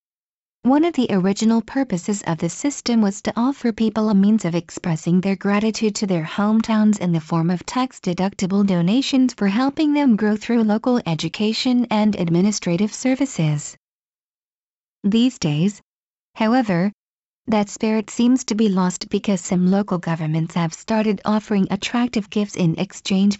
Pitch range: 185-235 Hz